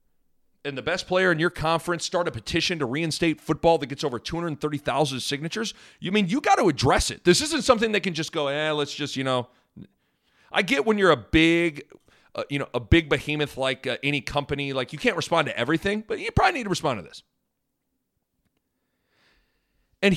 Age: 40-59